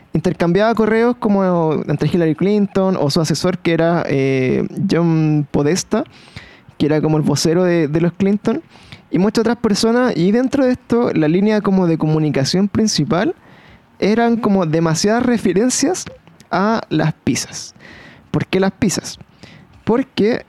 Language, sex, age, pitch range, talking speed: Spanish, male, 20-39, 155-205 Hz, 145 wpm